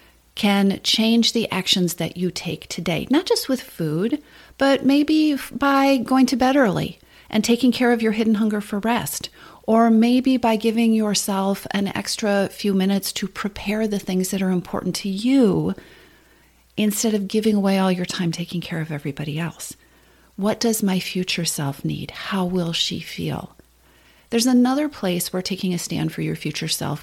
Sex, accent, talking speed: female, American, 175 wpm